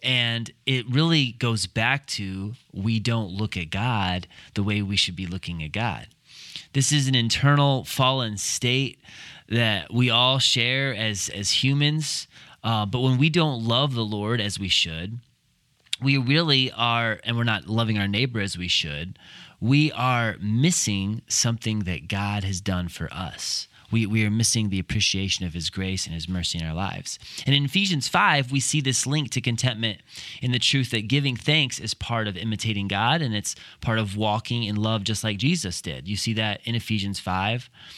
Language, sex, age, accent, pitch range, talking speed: English, male, 30-49, American, 105-135 Hz, 185 wpm